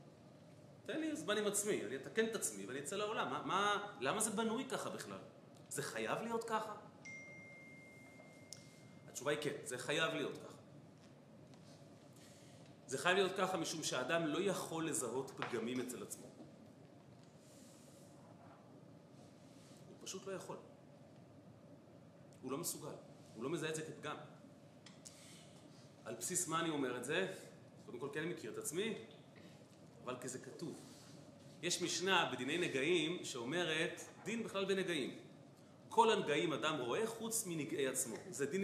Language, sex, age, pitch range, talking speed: Hebrew, male, 30-49, 145-195 Hz, 135 wpm